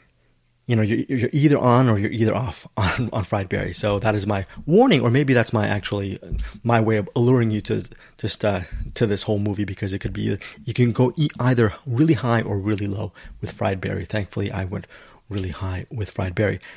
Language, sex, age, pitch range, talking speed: English, male, 30-49, 100-120 Hz, 215 wpm